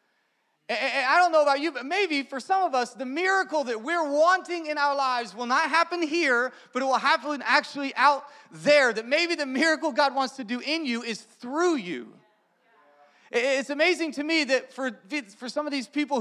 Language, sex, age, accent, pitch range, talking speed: English, male, 30-49, American, 215-290 Hz, 195 wpm